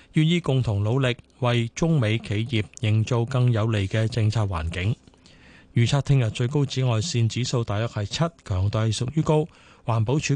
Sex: male